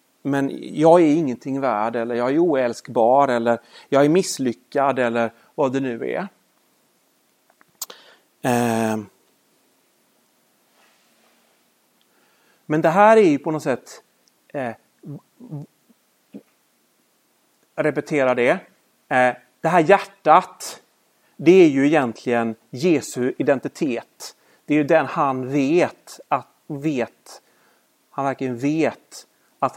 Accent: native